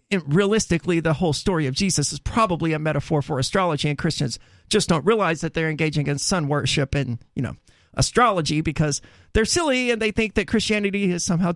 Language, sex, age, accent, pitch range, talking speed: English, male, 40-59, American, 160-240 Hz, 190 wpm